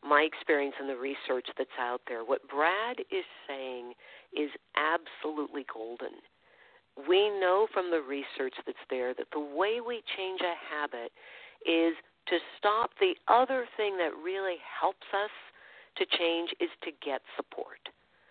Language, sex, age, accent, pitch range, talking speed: English, female, 50-69, American, 150-210 Hz, 150 wpm